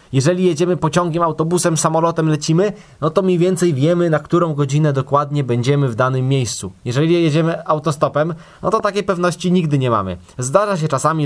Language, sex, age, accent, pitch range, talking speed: Polish, male, 20-39, native, 140-165 Hz, 170 wpm